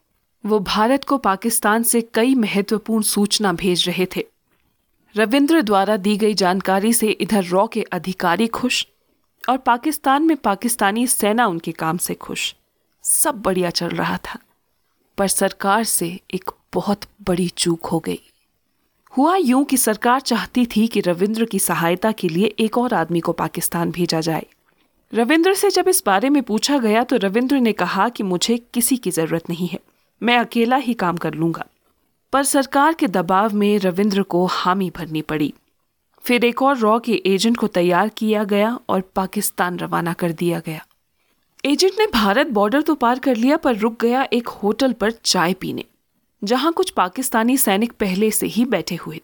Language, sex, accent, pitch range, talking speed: Hindi, female, native, 185-245 Hz, 170 wpm